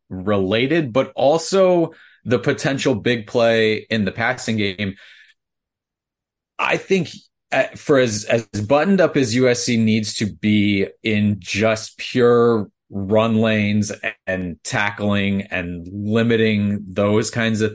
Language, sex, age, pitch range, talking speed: English, male, 30-49, 105-125 Hz, 120 wpm